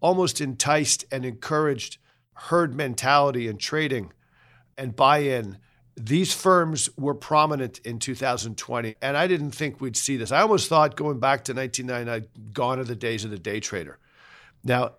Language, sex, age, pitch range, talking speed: English, male, 50-69, 125-155 Hz, 155 wpm